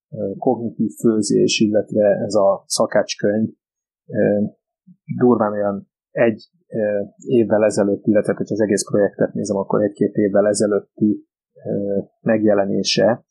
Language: Hungarian